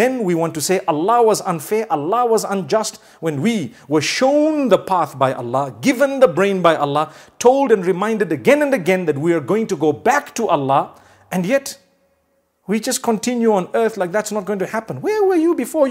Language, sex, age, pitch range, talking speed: English, male, 50-69, 170-235 Hz, 210 wpm